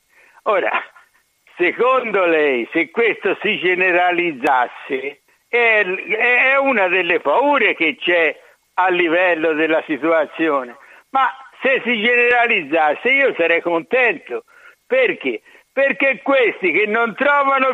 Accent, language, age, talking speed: native, Italian, 60-79, 105 wpm